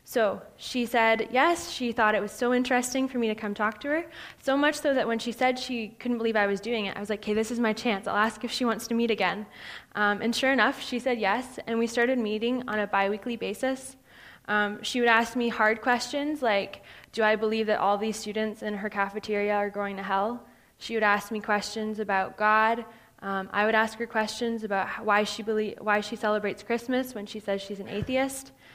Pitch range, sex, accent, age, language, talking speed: 205-240 Hz, female, American, 20-39, English, 230 wpm